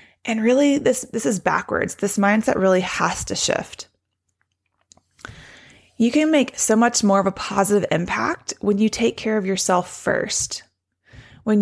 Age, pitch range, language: 20-39, 185-230 Hz, English